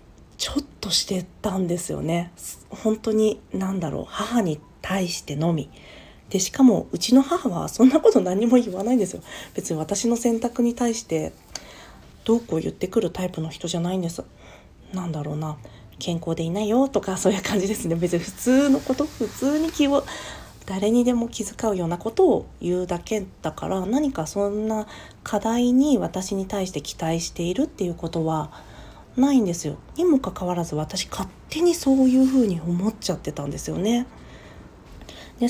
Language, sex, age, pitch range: Japanese, female, 40-59, 175-250 Hz